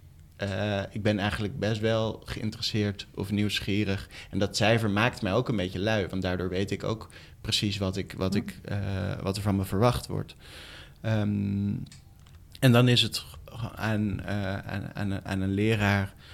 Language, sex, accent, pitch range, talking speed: Dutch, male, Dutch, 95-110 Hz, 145 wpm